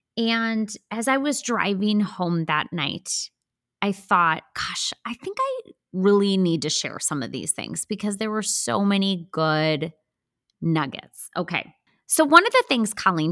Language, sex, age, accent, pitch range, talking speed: English, female, 20-39, American, 170-230 Hz, 160 wpm